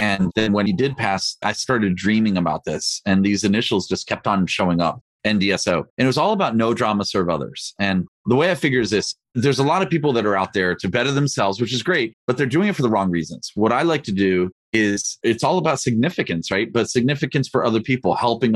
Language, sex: English, male